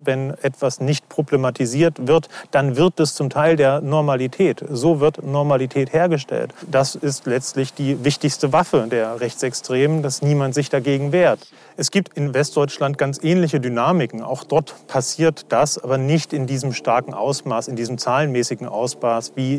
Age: 40-59